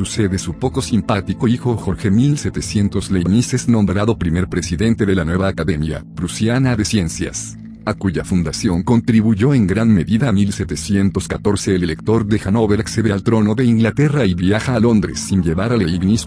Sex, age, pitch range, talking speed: male, 50-69, 95-115 Hz, 165 wpm